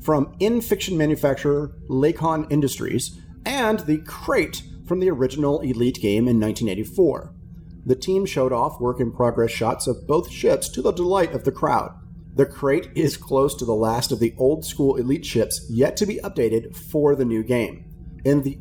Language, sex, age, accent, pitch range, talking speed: English, male, 40-59, American, 120-155 Hz, 170 wpm